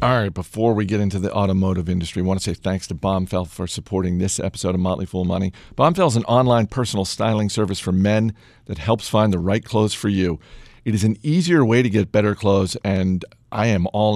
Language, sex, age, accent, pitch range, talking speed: English, male, 50-69, American, 95-125 Hz, 230 wpm